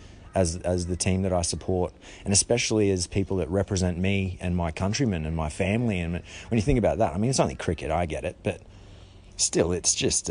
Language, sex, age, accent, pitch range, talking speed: English, male, 30-49, Australian, 90-105 Hz, 220 wpm